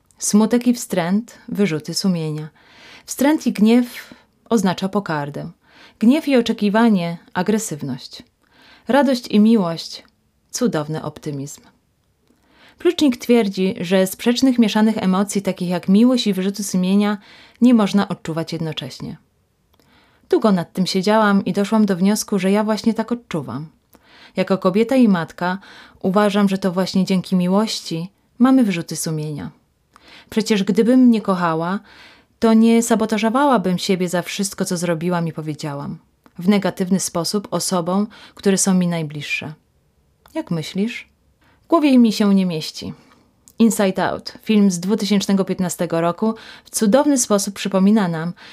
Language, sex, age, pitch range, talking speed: Polish, female, 20-39, 175-225 Hz, 130 wpm